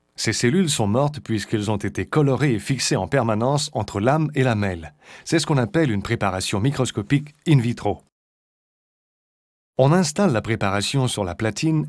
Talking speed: 165 wpm